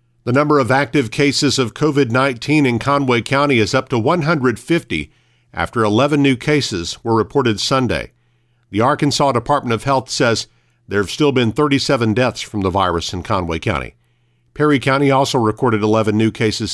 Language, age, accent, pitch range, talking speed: English, 50-69, American, 110-130 Hz, 165 wpm